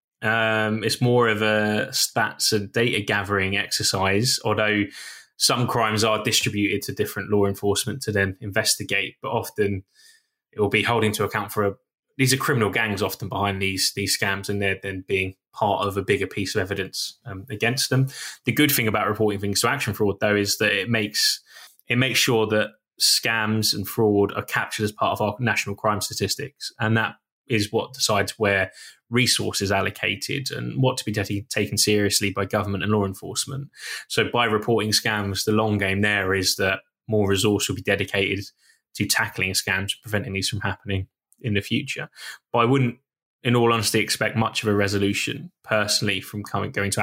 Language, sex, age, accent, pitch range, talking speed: English, male, 10-29, British, 100-115 Hz, 185 wpm